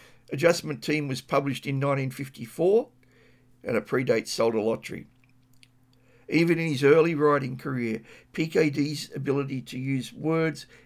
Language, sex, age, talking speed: English, male, 60-79, 125 wpm